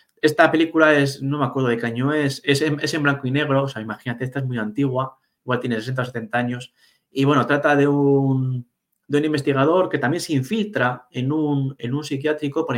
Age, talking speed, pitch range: 30-49, 225 wpm, 125-150 Hz